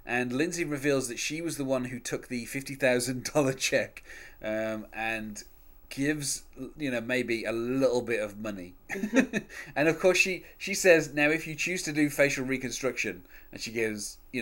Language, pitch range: English, 110-155 Hz